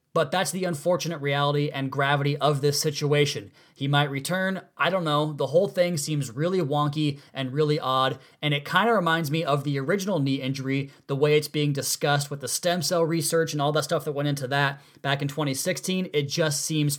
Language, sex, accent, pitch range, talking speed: English, male, American, 135-155 Hz, 210 wpm